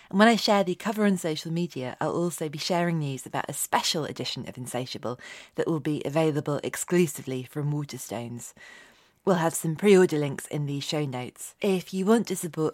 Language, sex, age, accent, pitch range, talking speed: English, female, 20-39, British, 140-180 Hz, 195 wpm